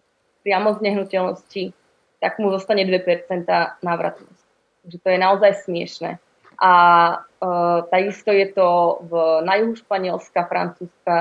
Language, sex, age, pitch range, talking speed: Slovak, female, 20-39, 180-195 Hz, 125 wpm